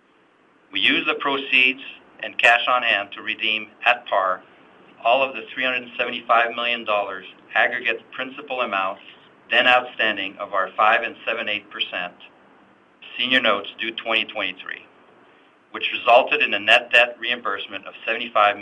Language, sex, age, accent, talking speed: English, male, 50-69, American, 130 wpm